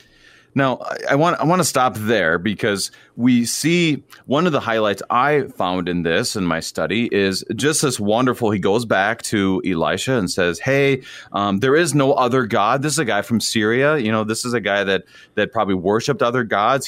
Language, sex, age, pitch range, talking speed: English, male, 30-49, 95-130 Hz, 205 wpm